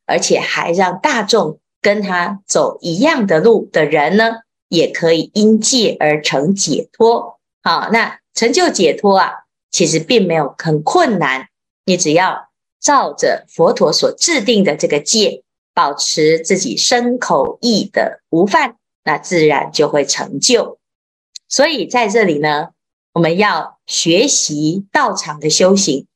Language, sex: Chinese, female